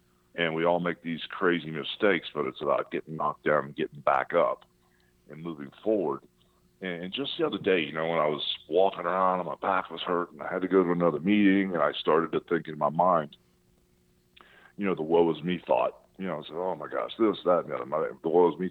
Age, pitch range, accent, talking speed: 40-59, 65-100 Hz, American, 250 wpm